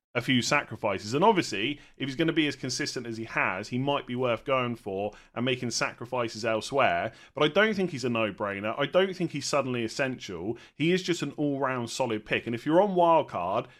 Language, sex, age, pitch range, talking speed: English, male, 30-49, 120-155 Hz, 220 wpm